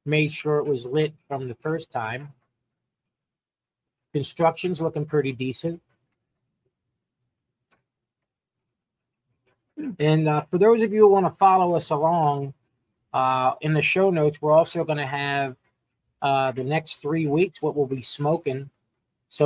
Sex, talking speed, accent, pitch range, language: male, 140 wpm, American, 140-185 Hz, English